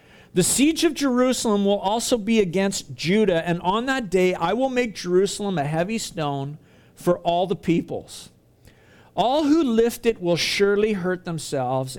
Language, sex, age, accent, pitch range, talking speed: English, male, 50-69, American, 145-215 Hz, 160 wpm